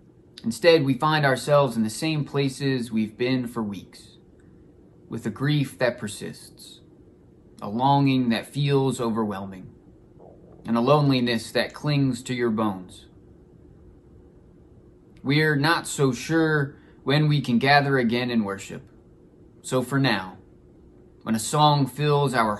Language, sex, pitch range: English, male, 115-145 Hz